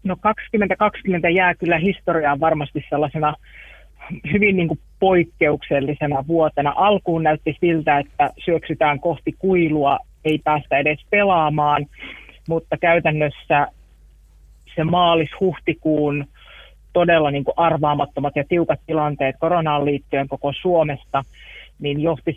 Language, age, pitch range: Finnish, 30-49, 145-170 Hz